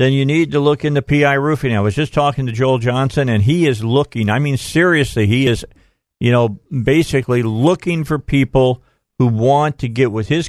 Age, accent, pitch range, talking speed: 50-69, American, 125-145 Hz, 205 wpm